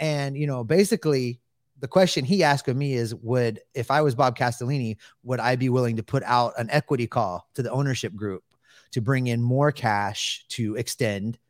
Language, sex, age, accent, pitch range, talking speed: English, male, 30-49, American, 120-160 Hz, 200 wpm